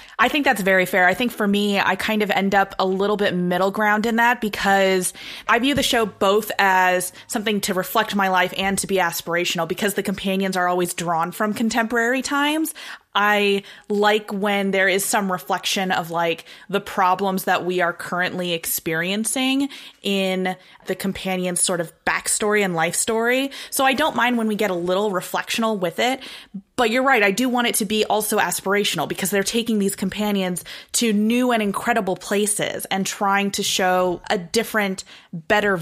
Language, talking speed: English, 185 wpm